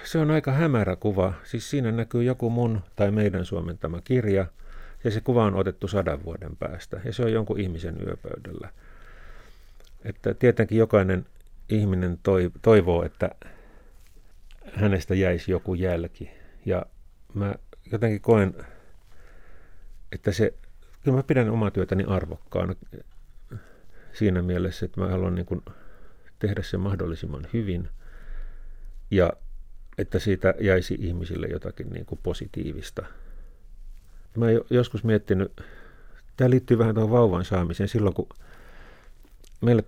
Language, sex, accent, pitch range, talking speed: Finnish, male, native, 90-110 Hz, 125 wpm